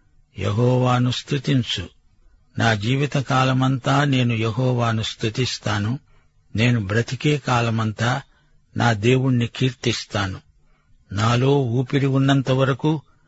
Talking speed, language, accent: 75 wpm, Telugu, native